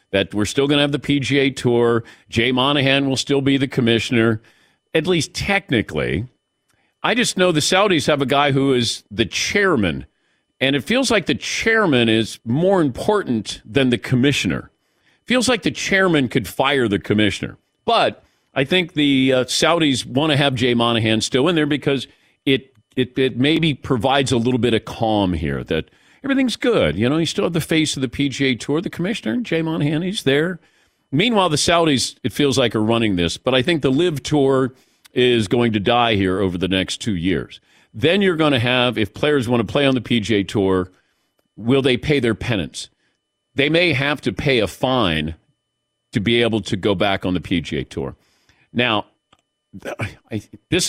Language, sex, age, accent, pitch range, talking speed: English, male, 50-69, American, 115-150 Hz, 190 wpm